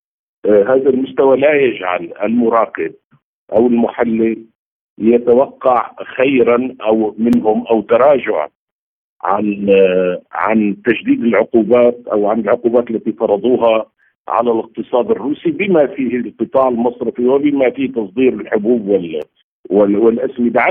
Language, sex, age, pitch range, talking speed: Arabic, male, 50-69, 110-155 Hz, 100 wpm